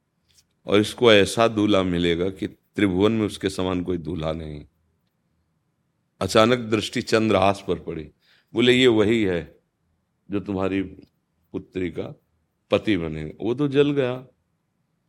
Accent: native